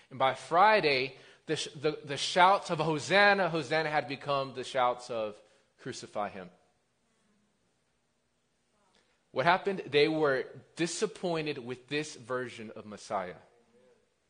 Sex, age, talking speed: male, 30-49, 120 wpm